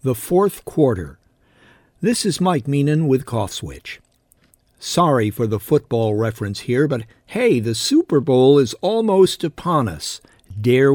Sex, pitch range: male, 115-145 Hz